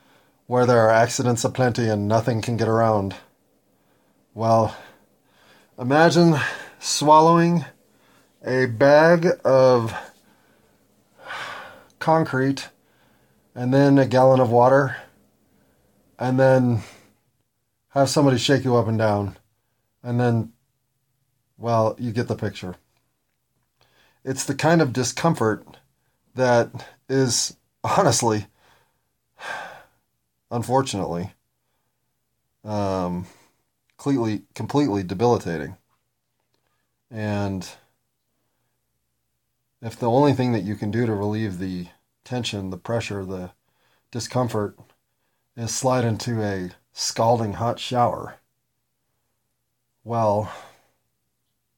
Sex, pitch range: male, 100-130 Hz